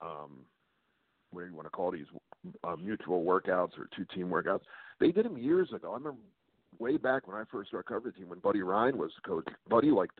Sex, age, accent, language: male, 50-69, American, English